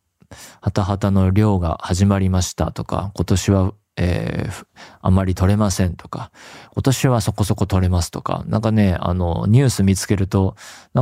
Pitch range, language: 90-110 Hz, Japanese